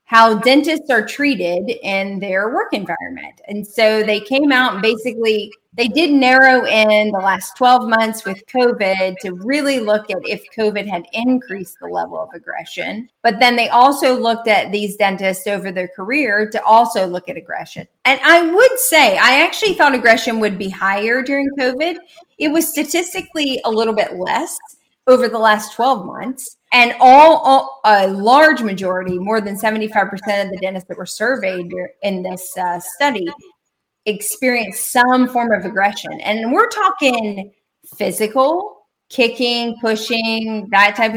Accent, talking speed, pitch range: American, 160 wpm, 200-260 Hz